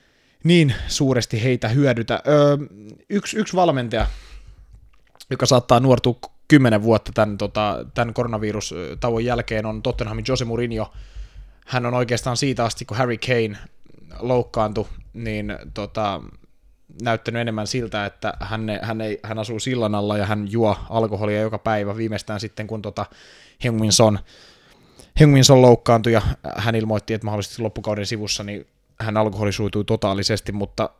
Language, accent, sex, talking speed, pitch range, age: Finnish, native, male, 130 wpm, 105-120 Hz, 20-39